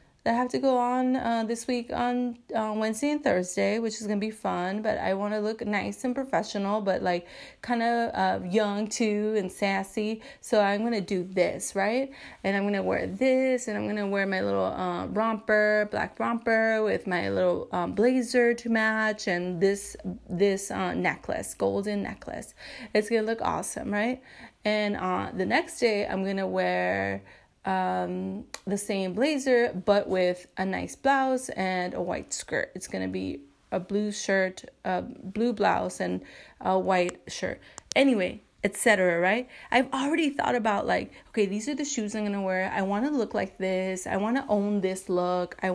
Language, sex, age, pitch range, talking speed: English, female, 20-39, 190-235 Hz, 185 wpm